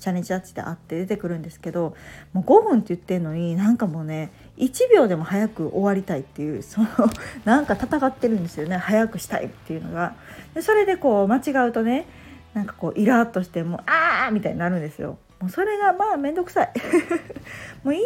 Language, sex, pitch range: Japanese, female, 175-260 Hz